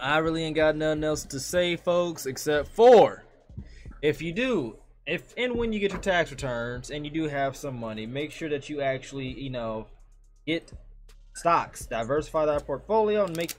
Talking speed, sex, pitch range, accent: 185 wpm, male, 135-170 Hz, American